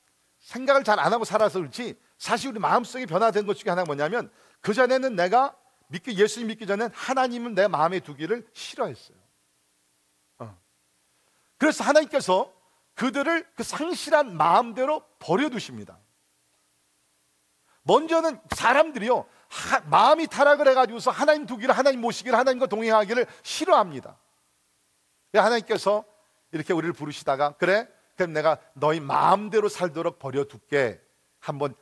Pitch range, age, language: 160-240 Hz, 50-69, Korean